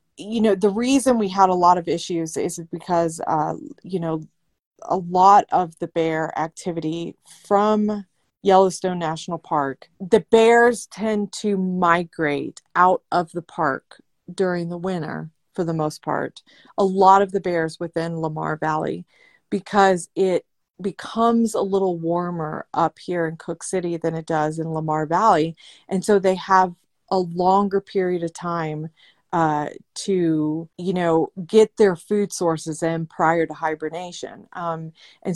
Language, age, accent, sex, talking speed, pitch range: English, 30-49, American, female, 150 wpm, 165-195 Hz